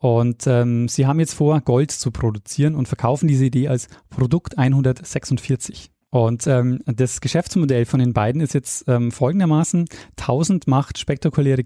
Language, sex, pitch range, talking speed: German, male, 125-155 Hz, 155 wpm